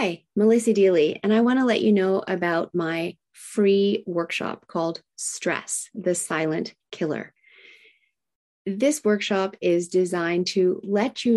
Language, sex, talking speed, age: English, female, 135 wpm, 30-49